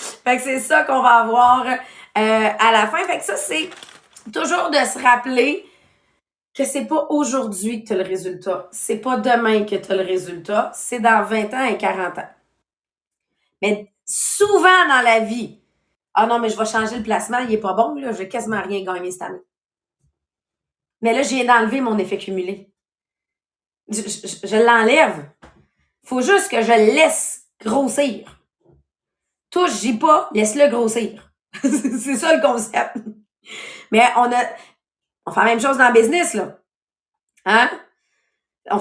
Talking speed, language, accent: 170 wpm, English, Canadian